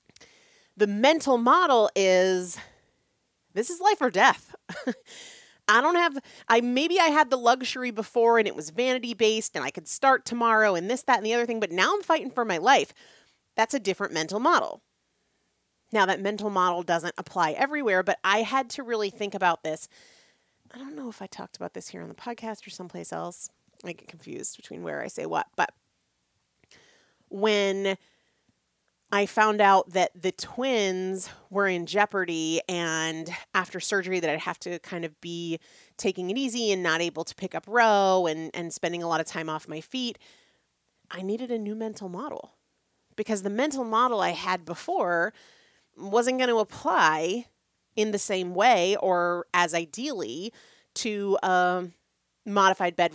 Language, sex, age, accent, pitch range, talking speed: English, female, 30-49, American, 175-240 Hz, 175 wpm